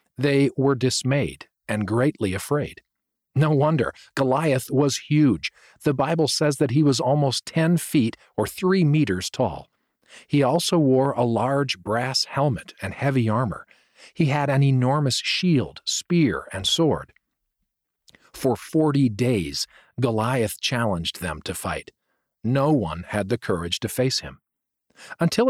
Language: English